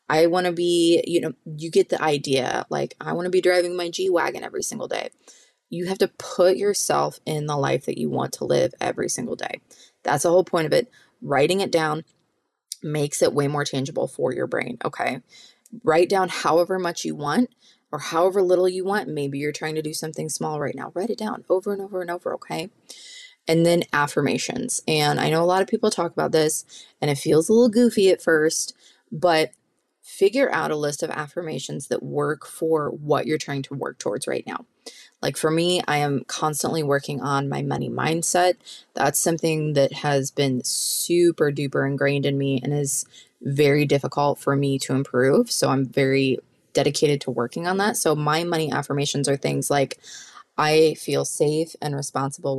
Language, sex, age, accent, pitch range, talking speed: English, female, 20-39, American, 145-180 Hz, 195 wpm